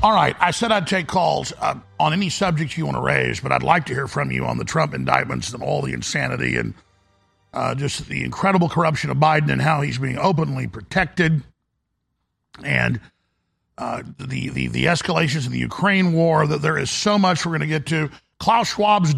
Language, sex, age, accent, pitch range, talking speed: English, male, 50-69, American, 150-195 Hz, 205 wpm